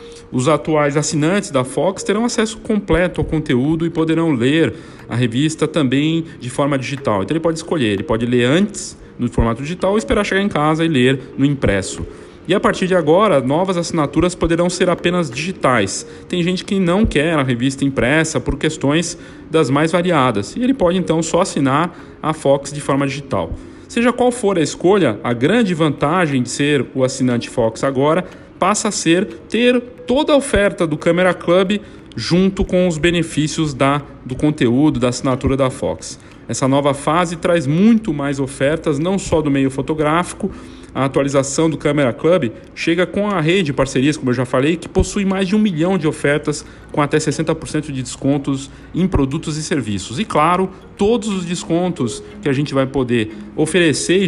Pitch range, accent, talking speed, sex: 135-180 Hz, Brazilian, 180 wpm, male